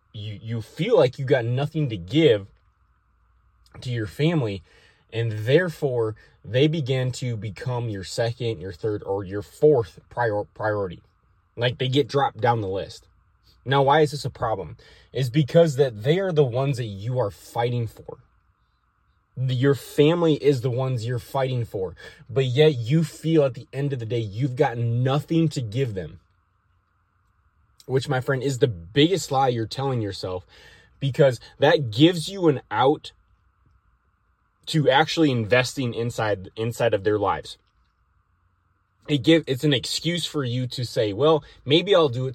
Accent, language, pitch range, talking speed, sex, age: American, English, 105-145 Hz, 160 wpm, male, 20-39